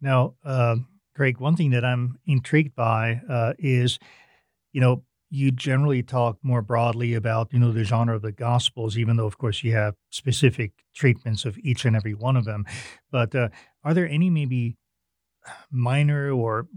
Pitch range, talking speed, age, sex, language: 115-135 Hz, 175 wpm, 40-59, male, English